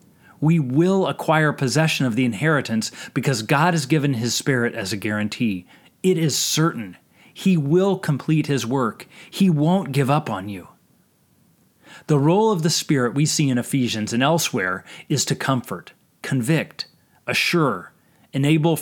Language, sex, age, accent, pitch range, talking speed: English, male, 30-49, American, 125-165 Hz, 150 wpm